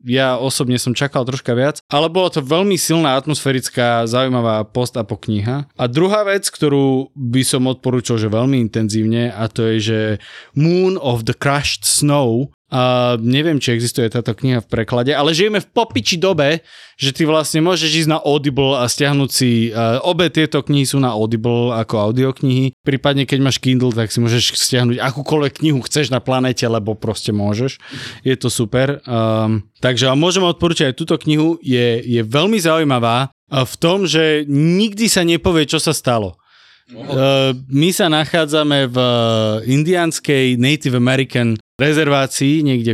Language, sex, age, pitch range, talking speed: Slovak, male, 20-39, 120-150 Hz, 160 wpm